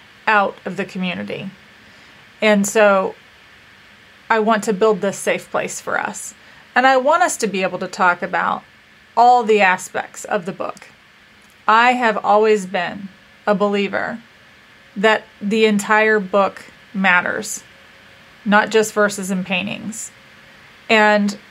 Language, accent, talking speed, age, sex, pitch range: English, American, 135 wpm, 30-49, female, 195-220 Hz